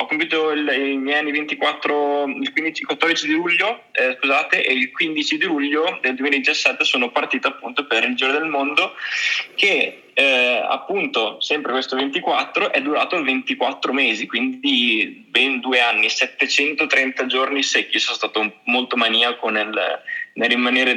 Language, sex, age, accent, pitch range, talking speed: Italian, male, 20-39, native, 125-150 Hz, 145 wpm